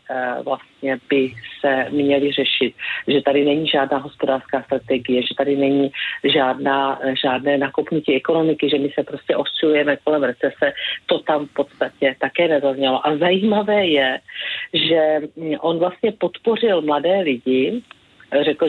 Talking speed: 130 wpm